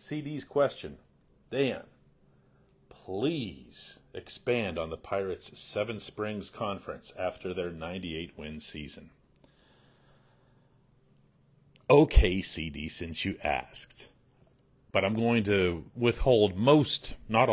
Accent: American